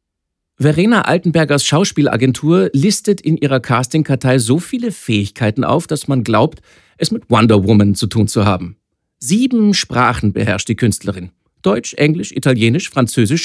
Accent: German